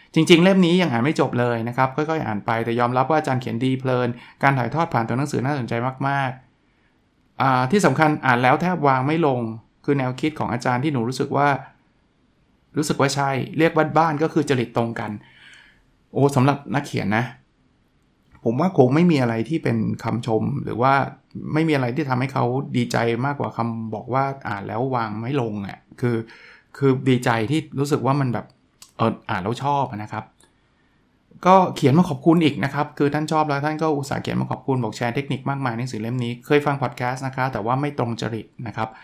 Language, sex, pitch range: Thai, male, 115-145 Hz